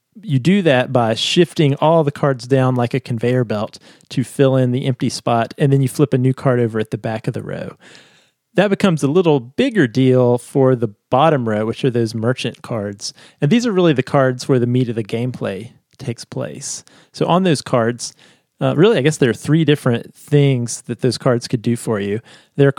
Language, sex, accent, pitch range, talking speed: English, male, American, 120-145 Hz, 220 wpm